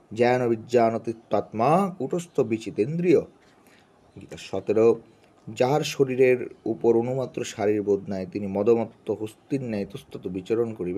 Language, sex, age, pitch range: Bengali, male, 30-49, 110-135 Hz